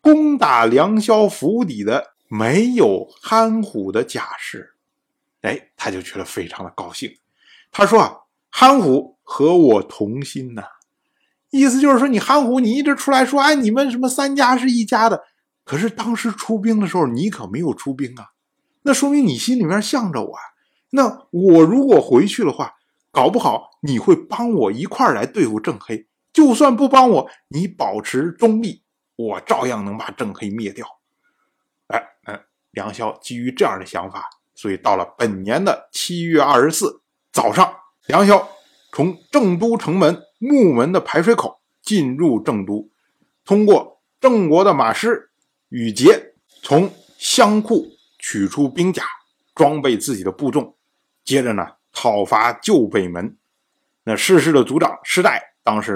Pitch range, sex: 160-265 Hz, male